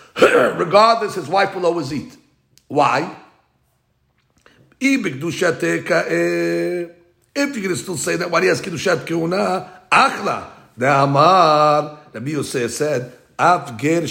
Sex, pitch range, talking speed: male, 135-225 Hz, 110 wpm